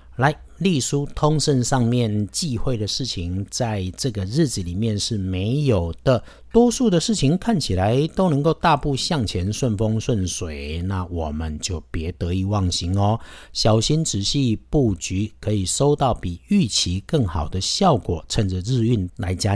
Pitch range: 95-130 Hz